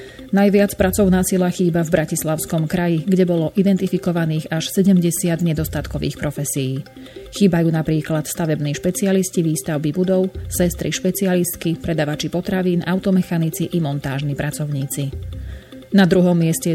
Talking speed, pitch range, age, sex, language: 110 wpm, 155-180 Hz, 30-49, female, Slovak